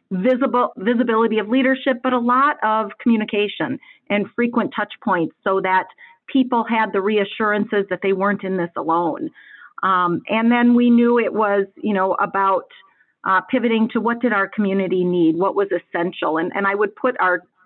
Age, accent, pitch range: 40-59, American, 185-230 Hz